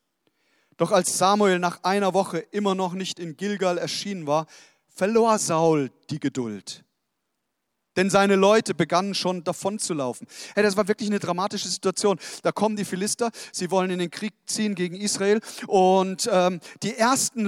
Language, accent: German, German